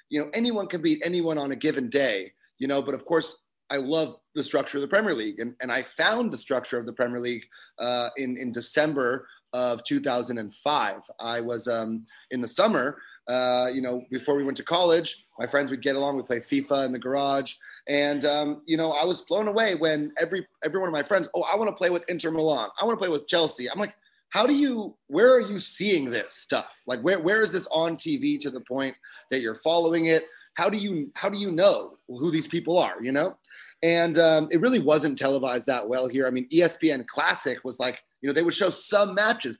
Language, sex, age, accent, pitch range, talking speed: English, male, 30-49, American, 135-170 Hz, 230 wpm